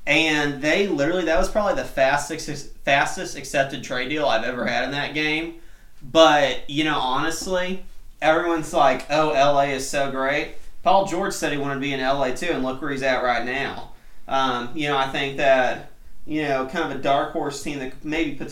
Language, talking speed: English, 205 wpm